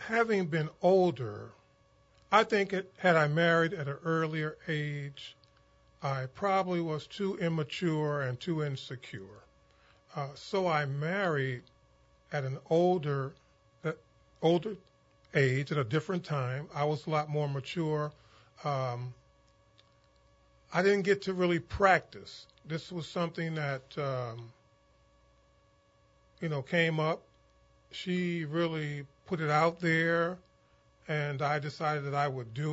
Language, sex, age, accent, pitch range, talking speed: English, male, 40-59, American, 130-165 Hz, 130 wpm